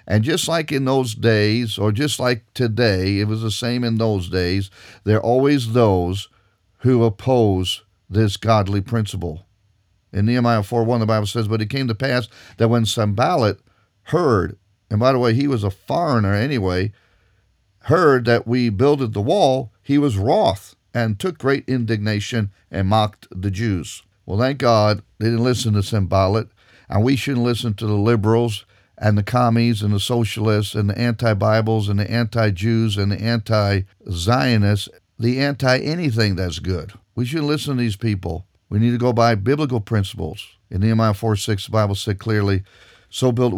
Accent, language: American, English